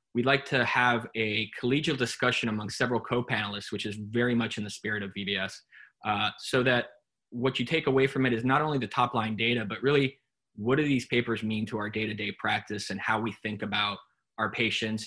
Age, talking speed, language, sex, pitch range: 20-39, 205 wpm, English, male, 105-125 Hz